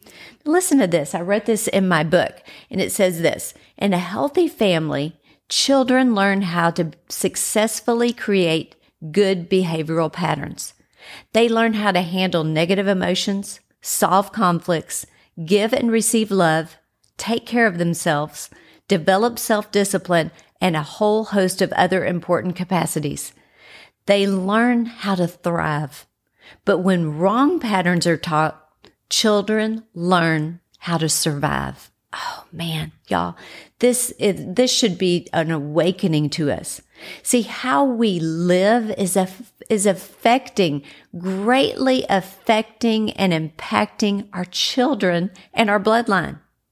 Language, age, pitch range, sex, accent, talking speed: English, 50-69, 170-225 Hz, female, American, 125 wpm